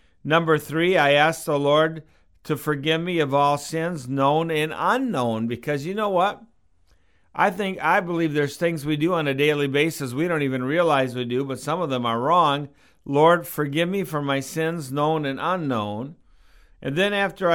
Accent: American